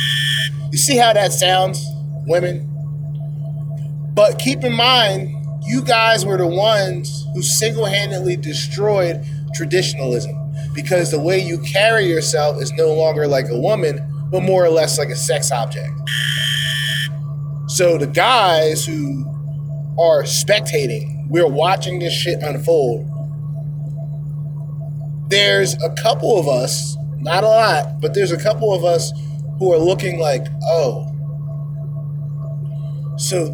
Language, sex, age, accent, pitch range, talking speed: English, male, 30-49, American, 145-160 Hz, 125 wpm